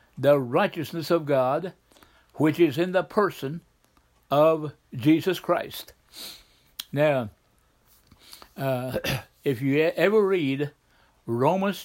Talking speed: 95 wpm